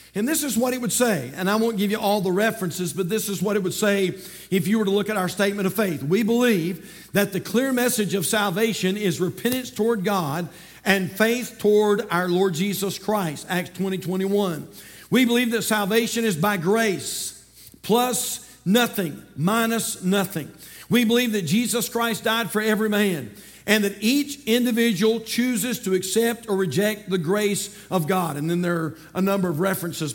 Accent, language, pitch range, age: American, English, 185-230 Hz, 50-69